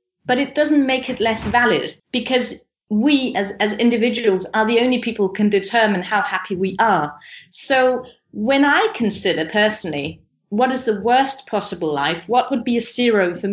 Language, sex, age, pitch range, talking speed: English, female, 30-49, 200-250 Hz, 175 wpm